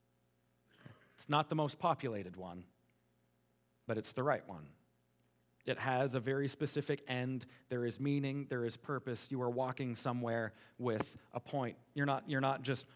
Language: English